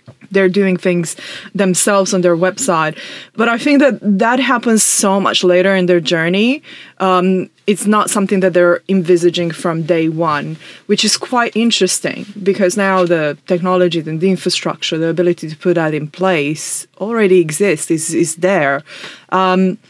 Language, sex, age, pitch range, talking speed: English, female, 20-39, 175-215 Hz, 160 wpm